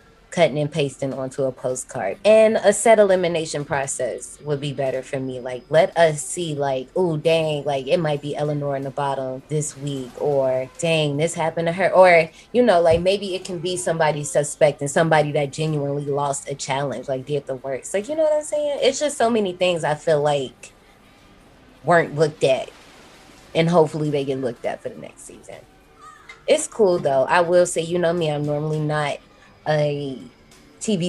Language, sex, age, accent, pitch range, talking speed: English, female, 20-39, American, 140-170 Hz, 195 wpm